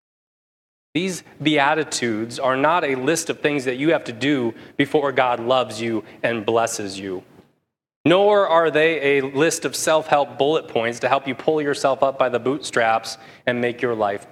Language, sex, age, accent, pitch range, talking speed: English, male, 30-49, American, 120-160 Hz, 175 wpm